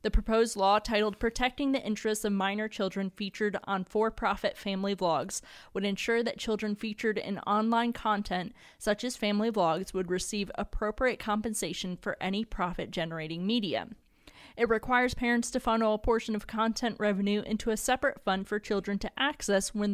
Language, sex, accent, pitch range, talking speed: English, female, American, 195-230 Hz, 160 wpm